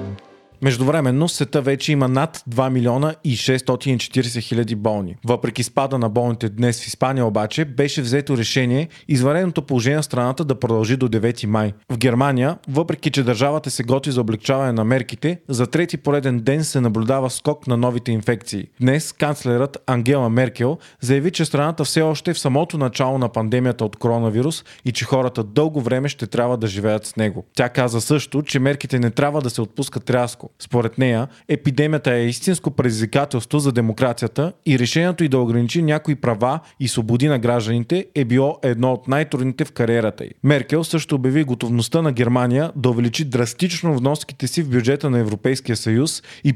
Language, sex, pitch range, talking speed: Bulgarian, male, 120-145 Hz, 175 wpm